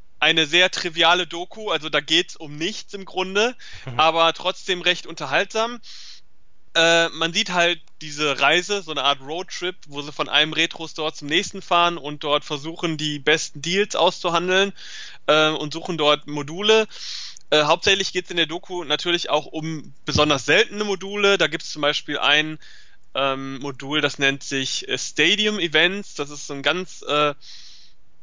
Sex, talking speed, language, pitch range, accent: male, 165 wpm, German, 150-185 Hz, German